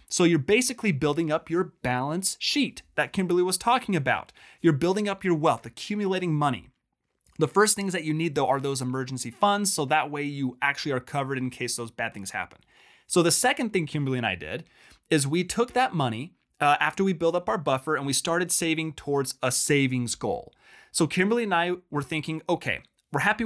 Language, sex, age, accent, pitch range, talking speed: English, male, 30-49, American, 130-185 Hz, 205 wpm